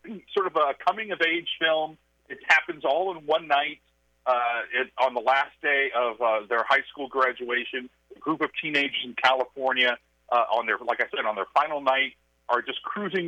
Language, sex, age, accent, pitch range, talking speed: English, male, 40-59, American, 120-150 Hz, 190 wpm